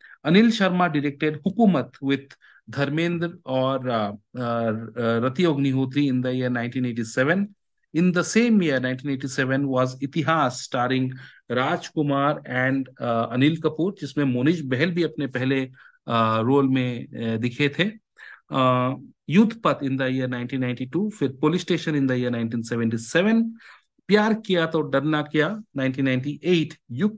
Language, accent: Hindi, native